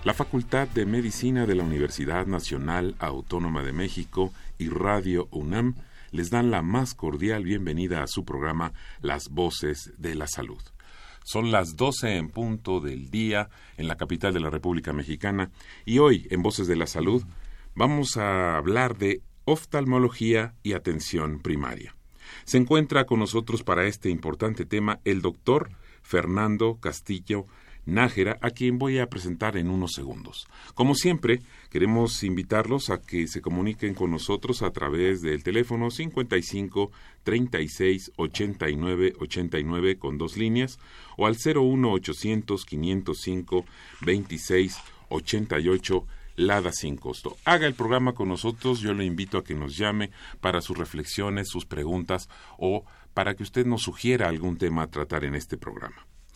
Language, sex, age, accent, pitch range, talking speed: Spanish, male, 40-59, Mexican, 85-115 Hz, 150 wpm